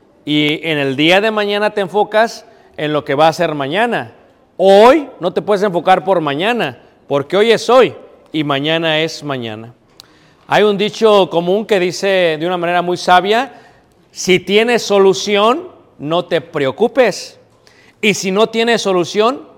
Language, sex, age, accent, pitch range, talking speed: Spanish, male, 40-59, Mexican, 170-225 Hz, 160 wpm